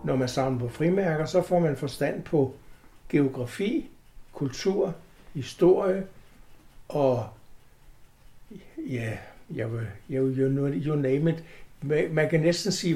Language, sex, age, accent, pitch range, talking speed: Danish, male, 60-79, native, 135-170 Hz, 110 wpm